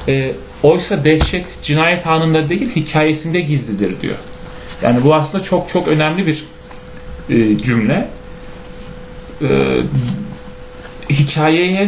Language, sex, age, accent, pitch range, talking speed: Turkish, male, 40-59, native, 135-165 Hz, 100 wpm